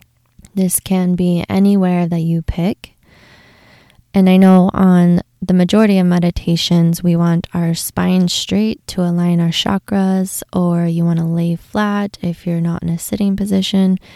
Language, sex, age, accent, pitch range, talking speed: English, female, 20-39, American, 165-190 Hz, 155 wpm